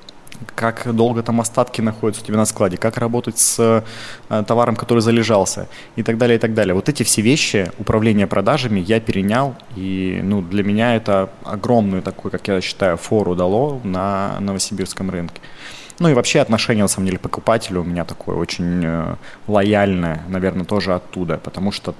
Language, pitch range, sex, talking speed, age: Russian, 100-115 Hz, male, 170 wpm, 20-39